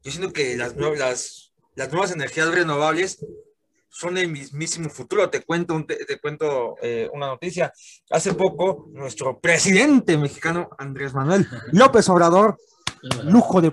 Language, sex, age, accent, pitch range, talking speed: Spanish, male, 30-49, Mexican, 155-220 Hz, 140 wpm